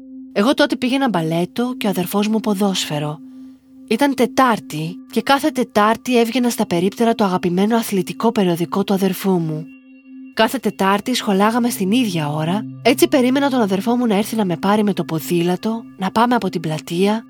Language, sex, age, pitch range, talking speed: Greek, female, 30-49, 175-240 Hz, 165 wpm